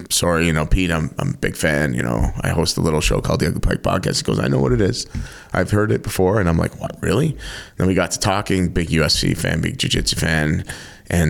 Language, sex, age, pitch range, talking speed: English, male, 30-49, 80-90 Hz, 265 wpm